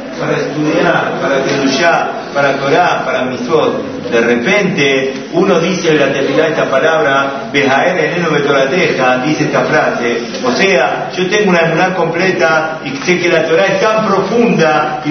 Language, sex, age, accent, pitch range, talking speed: Spanish, male, 40-59, Argentinian, 140-195 Hz, 165 wpm